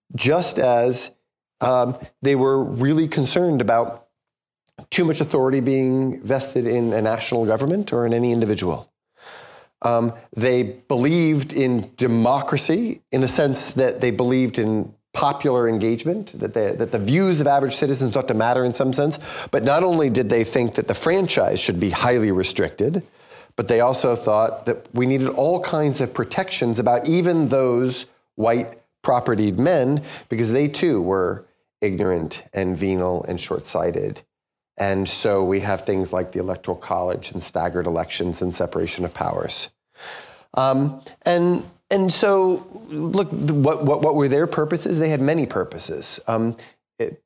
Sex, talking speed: male, 155 wpm